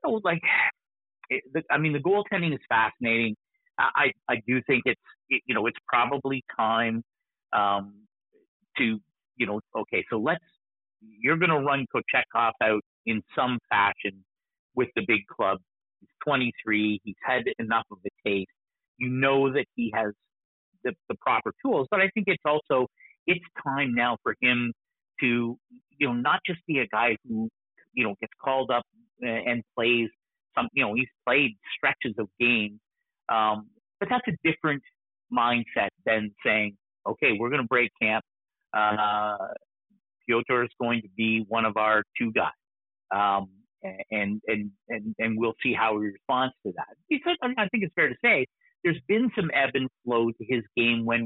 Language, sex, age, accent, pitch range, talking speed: English, male, 50-69, American, 110-160 Hz, 170 wpm